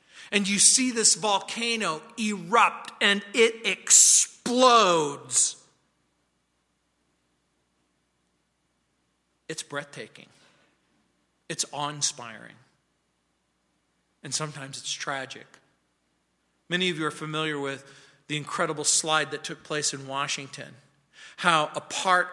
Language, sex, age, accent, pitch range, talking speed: English, male, 40-59, American, 125-190 Hz, 95 wpm